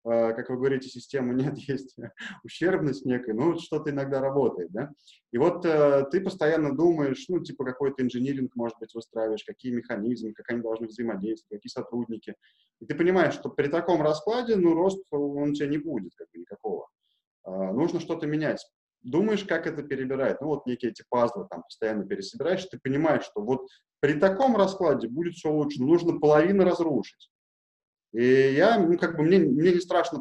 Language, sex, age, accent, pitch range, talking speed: Russian, male, 20-39, native, 125-170 Hz, 175 wpm